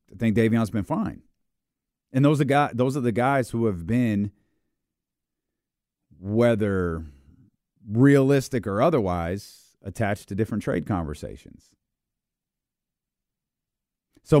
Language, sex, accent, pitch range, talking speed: English, male, American, 105-150 Hz, 110 wpm